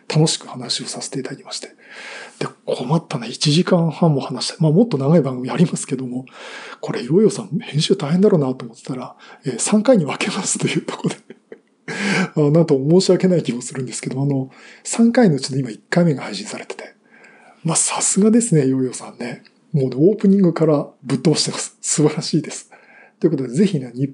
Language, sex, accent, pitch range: Japanese, male, native, 135-185 Hz